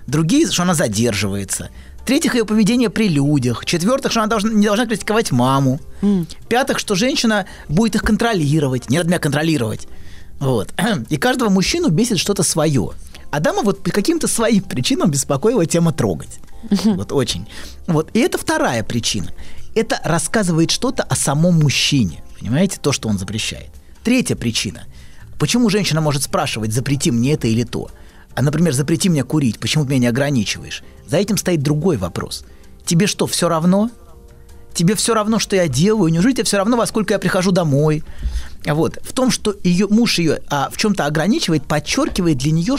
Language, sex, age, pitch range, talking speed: Russian, male, 30-49, 125-210 Hz, 170 wpm